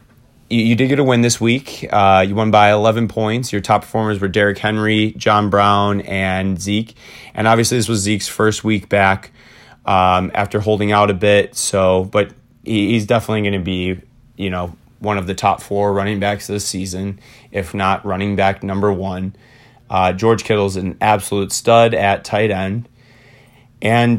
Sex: male